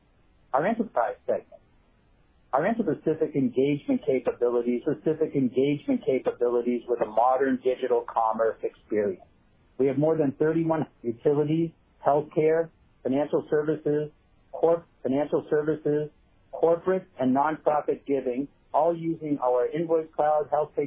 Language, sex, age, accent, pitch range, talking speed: English, male, 50-69, American, 130-155 Hz, 110 wpm